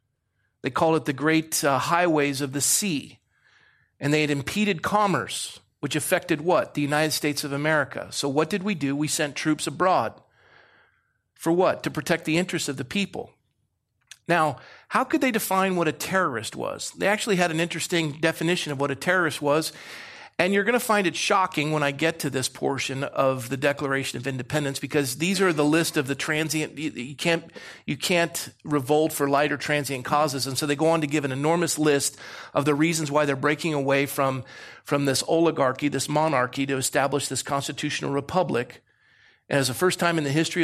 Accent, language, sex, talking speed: American, English, male, 195 wpm